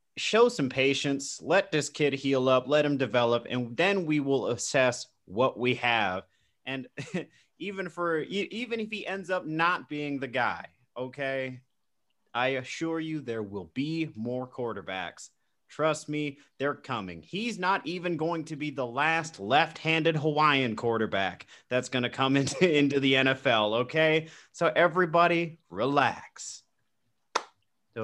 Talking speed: 145 wpm